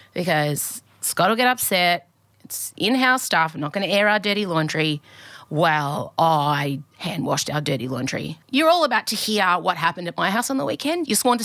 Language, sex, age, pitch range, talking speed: English, female, 30-49, 180-260 Hz, 205 wpm